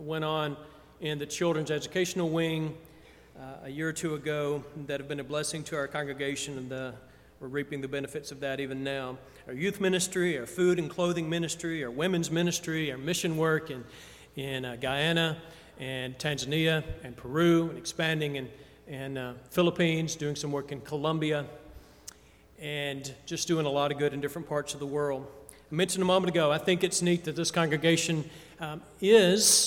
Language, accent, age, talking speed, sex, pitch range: English, American, 40-59, 180 wpm, male, 145-165 Hz